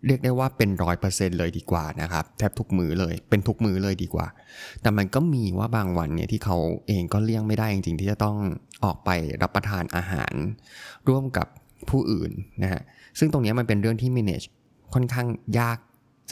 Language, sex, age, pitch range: Thai, male, 20-39, 95-120 Hz